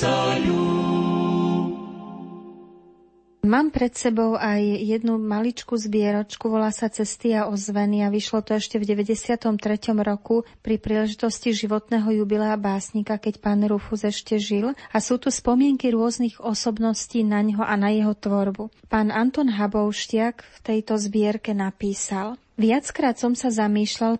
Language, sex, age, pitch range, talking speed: Slovak, female, 30-49, 210-235 Hz, 130 wpm